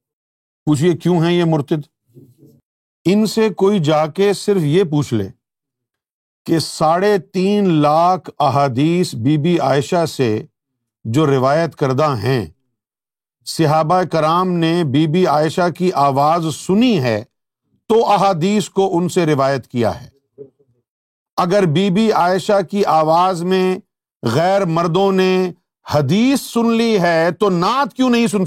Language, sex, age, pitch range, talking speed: Urdu, male, 50-69, 140-195 Hz, 135 wpm